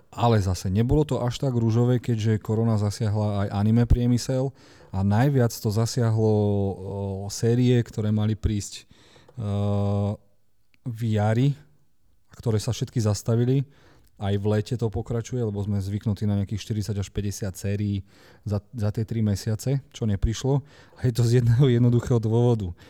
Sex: male